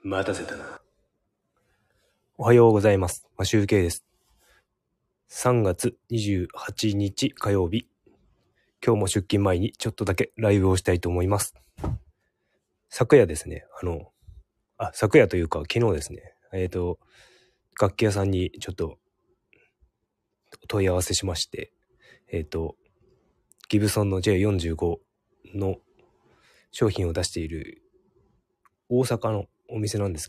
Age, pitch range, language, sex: 20-39, 95-120 Hz, Japanese, male